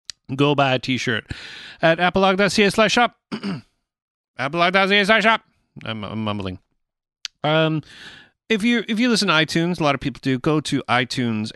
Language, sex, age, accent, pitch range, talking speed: English, male, 40-59, American, 115-165 Hz, 150 wpm